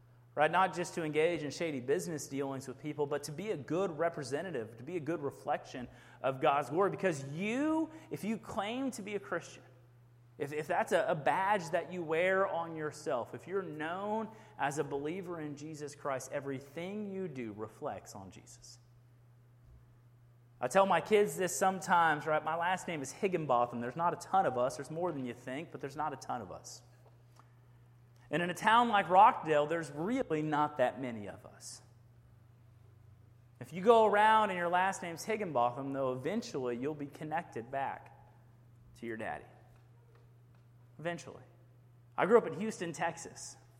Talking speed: 175 wpm